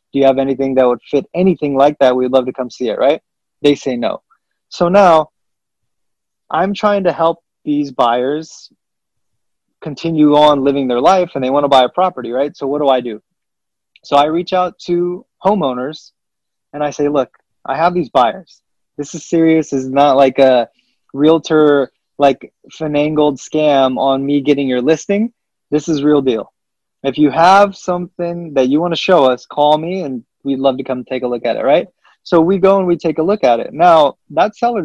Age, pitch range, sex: 20-39, 135-165 Hz, male